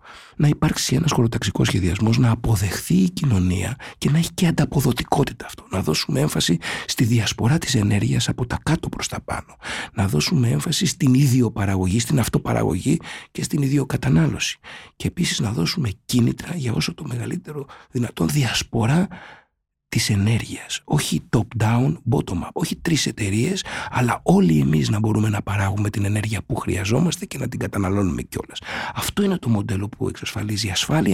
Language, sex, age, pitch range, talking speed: Greek, male, 60-79, 100-155 Hz, 150 wpm